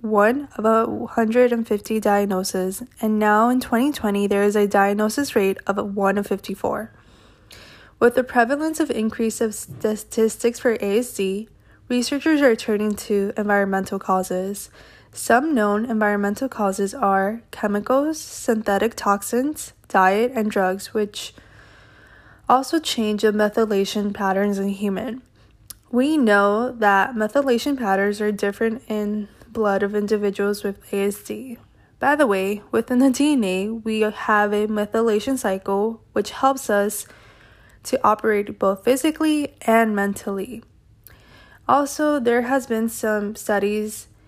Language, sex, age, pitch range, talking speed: English, female, 10-29, 200-235 Hz, 120 wpm